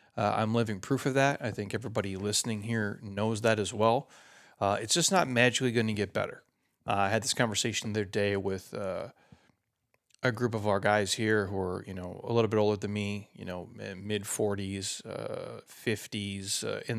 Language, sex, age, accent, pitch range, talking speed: English, male, 30-49, American, 105-125 Hz, 195 wpm